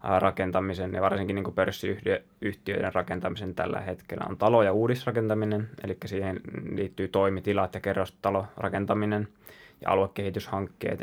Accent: native